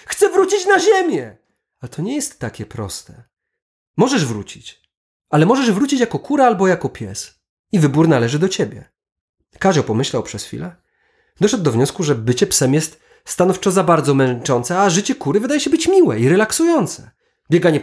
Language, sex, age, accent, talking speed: Polish, male, 30-49, native, 170 wpm